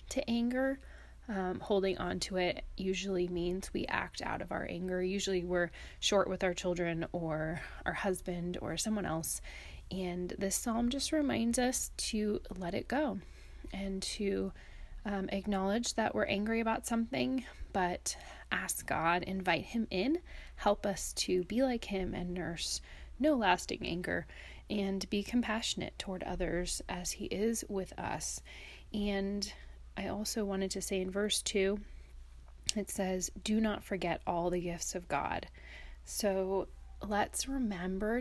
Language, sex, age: English, female, 20-39